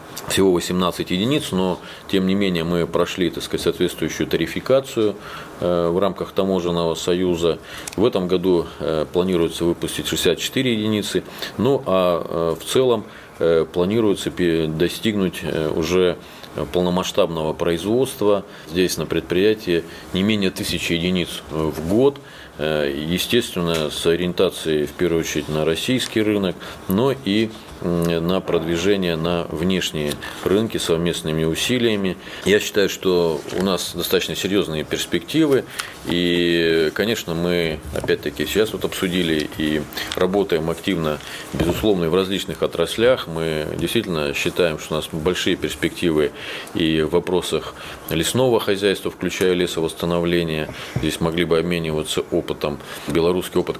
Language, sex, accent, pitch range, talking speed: Russian, male, native, 80-95 Hz, 115 wpm